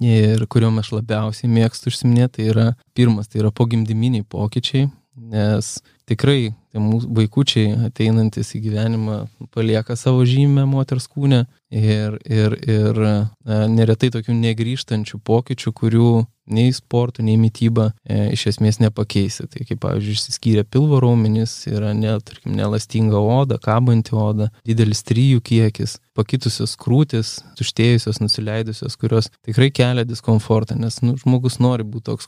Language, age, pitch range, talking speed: Polish, 20-39, 110-125 Hz, 130 wpm